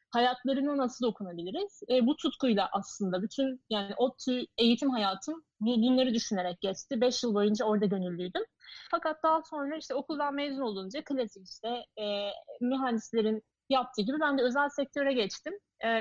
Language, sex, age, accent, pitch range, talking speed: Turkish, female, 30-49, native, 210-275 Hz, 150 wpm